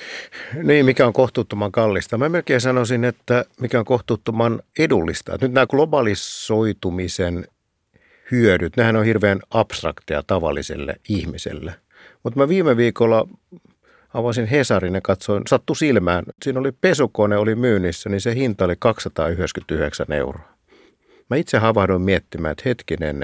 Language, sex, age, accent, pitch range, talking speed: Finnish, male, 50-69, native, 90-125 Hz, 130 wpm